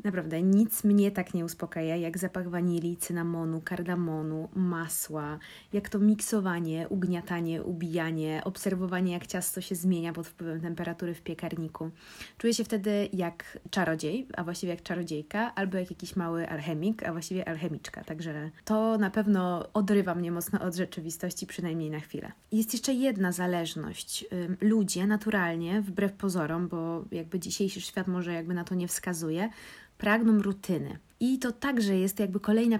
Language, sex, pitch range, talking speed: Polish, female, 170-205 Hz, 150 wpm